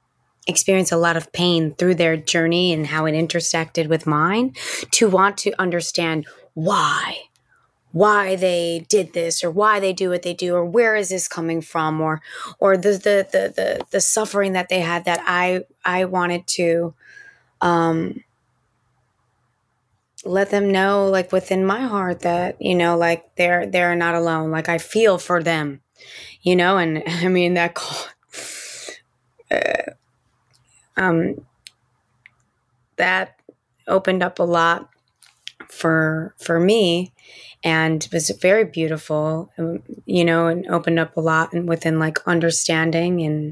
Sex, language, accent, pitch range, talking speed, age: female, English, American, 160-185 Hz, 145 wpm, 20-39